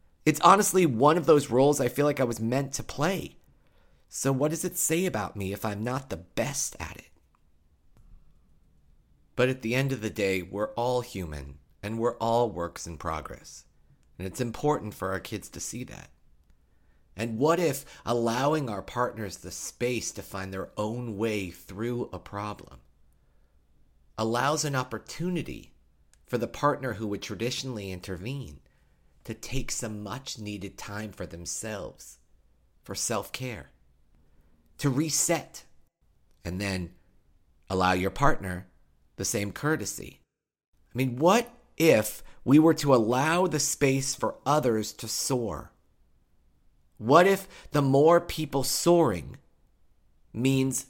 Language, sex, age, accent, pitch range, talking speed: English, male, 30-49, American, 90-140 Hz, 140 wpm